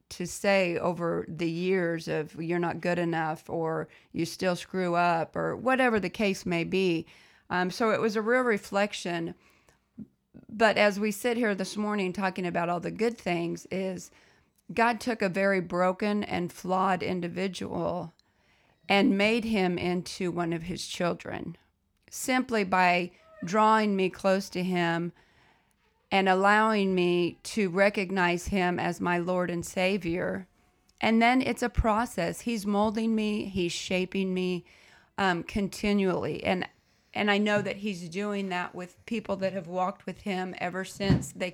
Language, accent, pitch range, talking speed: English, American, 175-210 Hz, 155 wpm